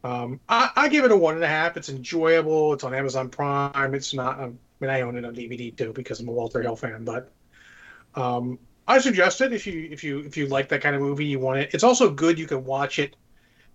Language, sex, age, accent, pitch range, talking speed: English, male, 30-49, American, 130-165 Hz, 255 wpm